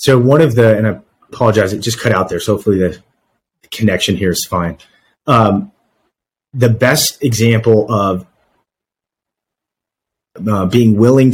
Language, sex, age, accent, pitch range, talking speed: English, male, 30-49, American, 100-120 Hz, 145 wpm